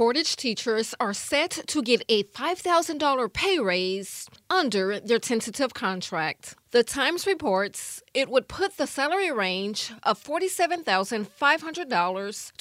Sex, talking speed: female, 120 wpm